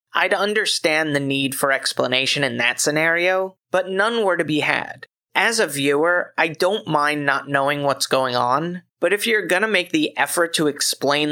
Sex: male